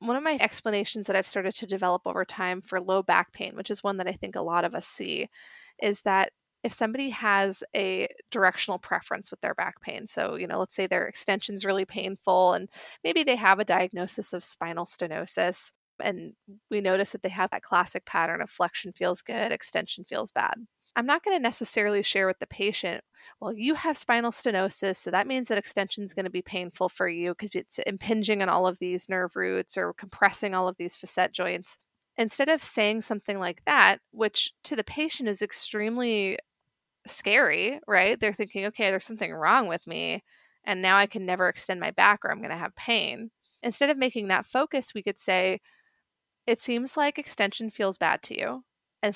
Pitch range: 190-235 Hz